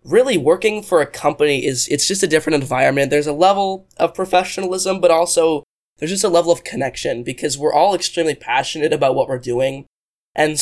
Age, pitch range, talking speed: 10-29, 135-170 Hz, 190 wpm